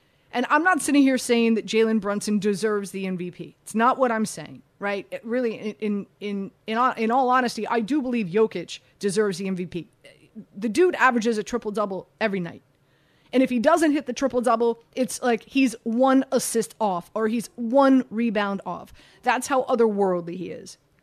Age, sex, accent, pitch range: 30-49, female, American, 185-250 Hz